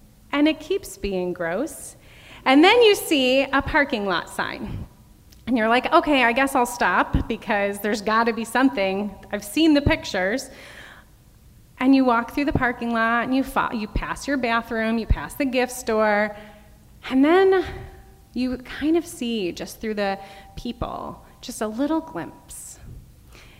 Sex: female